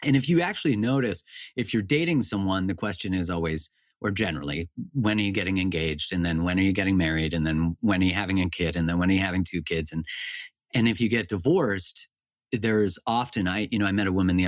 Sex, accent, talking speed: male, American, 245 wpm